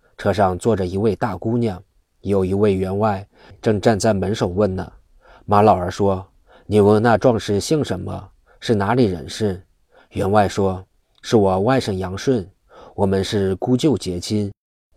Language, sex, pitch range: Chinese, male, 95-110 Hz